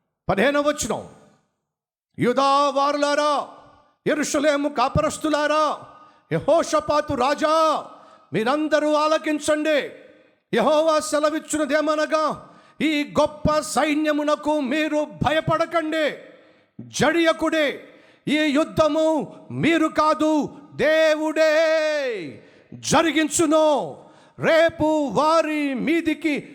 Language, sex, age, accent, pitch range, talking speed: Telugu, male, 50-69, native, 295-320 Hz, 55 wpm